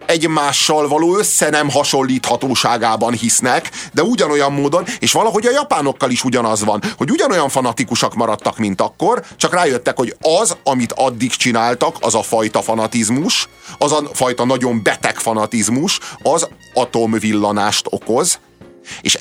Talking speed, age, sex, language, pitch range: 135 wpm, 30-49, male, Hungarian, 100-140 Hz